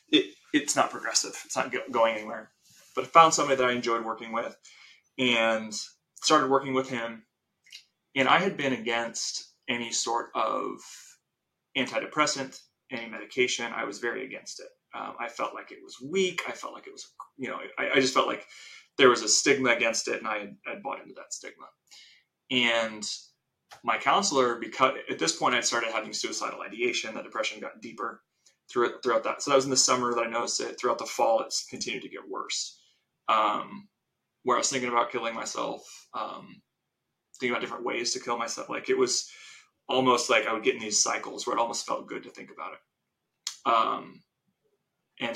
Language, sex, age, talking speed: English, male, 30-49, 195 wpm